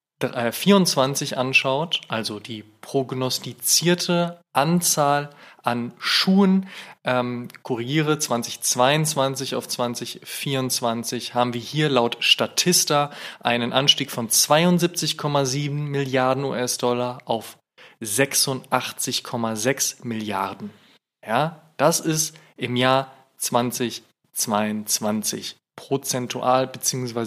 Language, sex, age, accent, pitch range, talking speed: German, male, 20-39, German, 120-145 Hz, 75 wpm